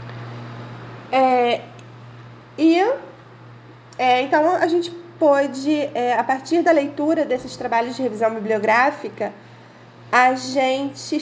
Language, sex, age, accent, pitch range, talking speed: Portuguese, female, 20-39, Brazilian, 250-310 Hz, 100 wpm